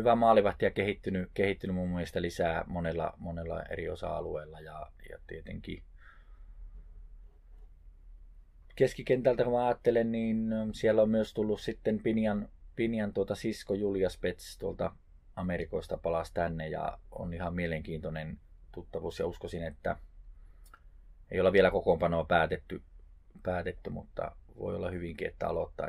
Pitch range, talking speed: 80-100 Hz, 125 wpm